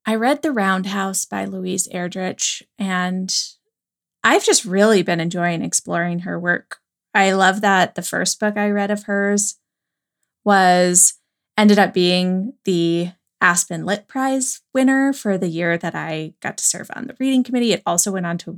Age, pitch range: 20-39, 180-220 Hz